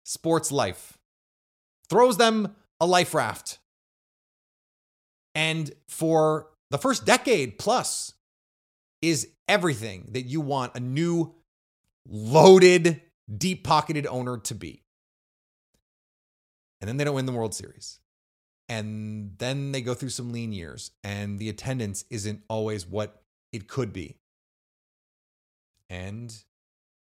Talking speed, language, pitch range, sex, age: 115 wpm, English, 110-170 Hz, male, 30-49